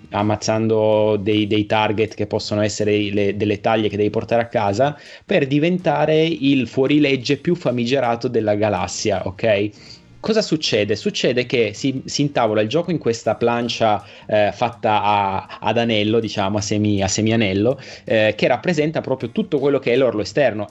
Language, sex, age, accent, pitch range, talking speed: Italian, male, 20-39, native, 105-130 Hz, 155 wpm